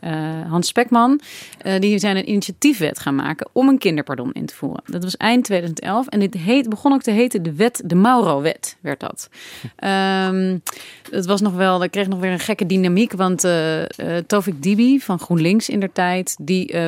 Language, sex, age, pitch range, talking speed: Dutch, female, 30-49, 170-210 Hz, 205 wpm